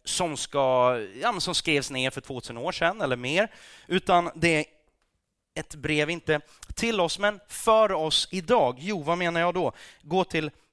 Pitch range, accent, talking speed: 115-170 Hz, native, 170 wpm